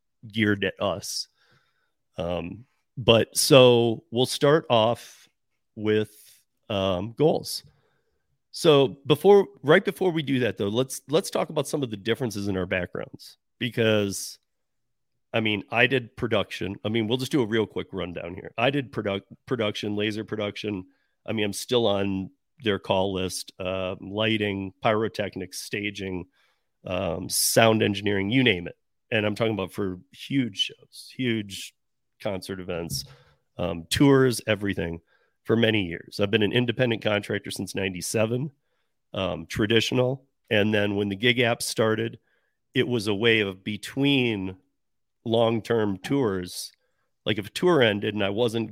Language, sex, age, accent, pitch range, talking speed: English, male, 40-59, American, 100-120 Hz, 145 wpm